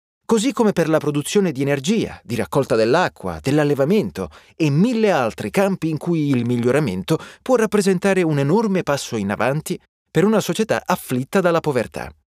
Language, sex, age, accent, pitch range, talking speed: Italian, male, 30-49, native, 125-195 Hz, 155 wpm